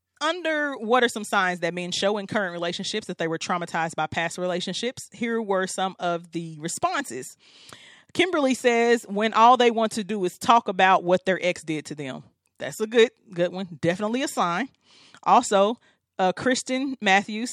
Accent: American